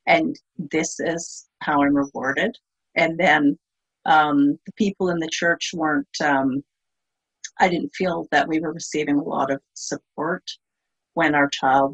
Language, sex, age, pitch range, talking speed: English, female, 50-69, 145-195 Hz, 150 wpm